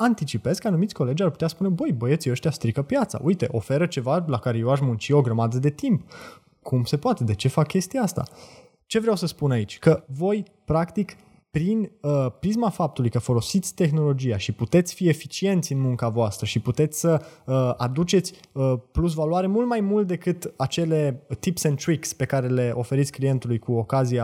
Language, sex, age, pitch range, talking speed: Romanian, male, 20-39, 130-180 Hz, 190 wpm